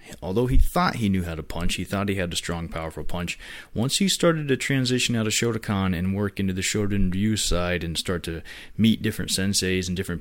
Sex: male